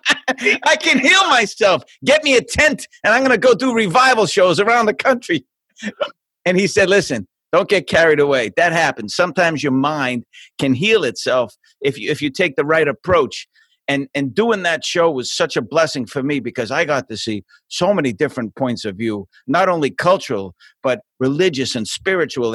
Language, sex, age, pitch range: English, male, 50-69, 125-190 Hz